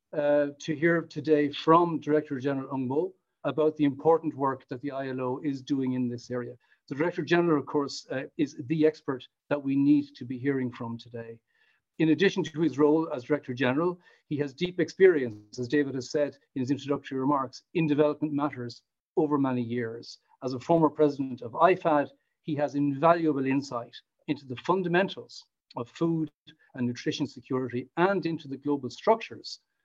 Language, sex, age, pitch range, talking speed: English, male, 50-69, 130-155 Hz, 175 wpm